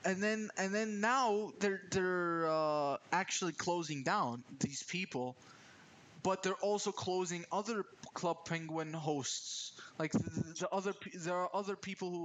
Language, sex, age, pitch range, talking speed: English, male, 20-39, 150-185 Hz, 145 wpm